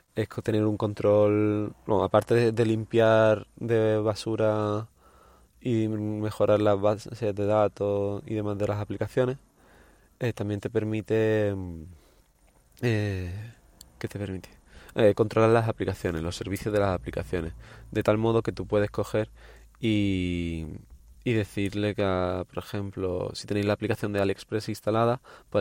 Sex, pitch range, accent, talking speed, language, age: male, 95-110 Hz, Spanish, 145 wpm, Spanish, 20-39